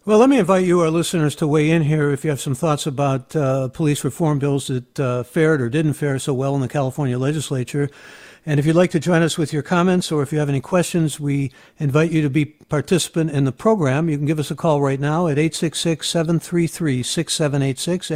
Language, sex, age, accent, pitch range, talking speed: English, male, 60-79, American, 140-170 Hz, 225 wpm